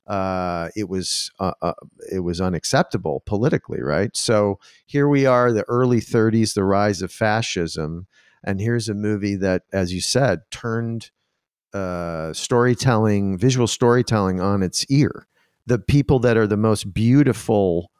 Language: English